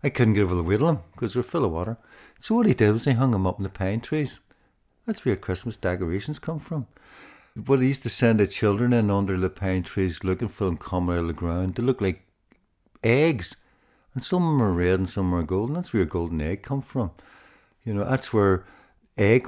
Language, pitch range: English, 90-125 Hz